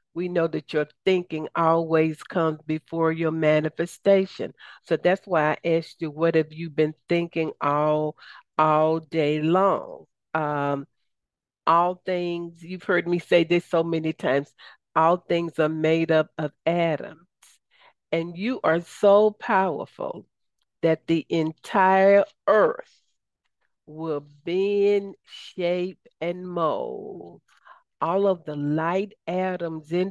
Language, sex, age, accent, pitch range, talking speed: English, female, 50-69, American, 155-190 Hz, 125 wpm